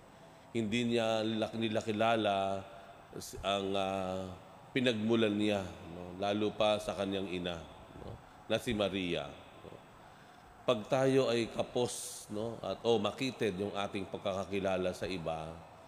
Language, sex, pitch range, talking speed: Filipino, male, 95-115 Hz, 130 wpm